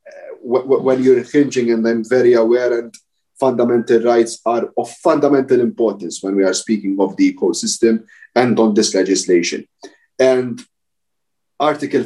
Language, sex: Slovak, male